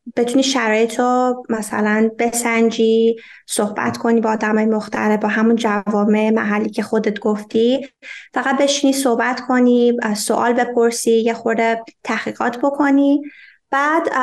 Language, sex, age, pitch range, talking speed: Persian, female, 20-39, 220-270 Hz, 120 wpm